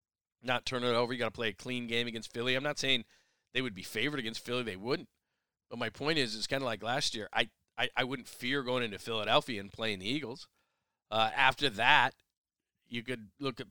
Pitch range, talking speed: 115-130 Hz, 230 wpm